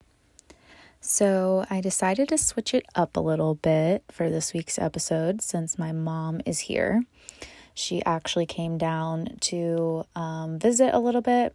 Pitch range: 160-190 Hz